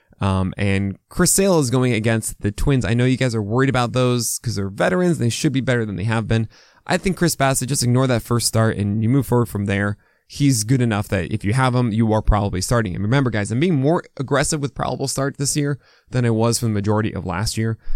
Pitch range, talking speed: 110-155 Hz, 255 wpm